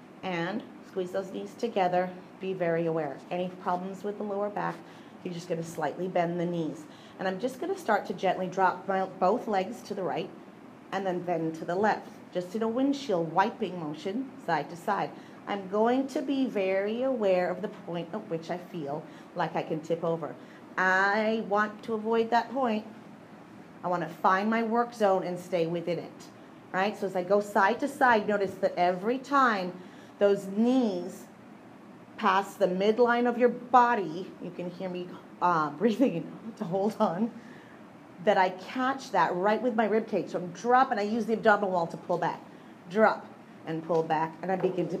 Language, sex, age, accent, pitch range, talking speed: English, female, 40-59, American, 175-225 Hz, 185 wpm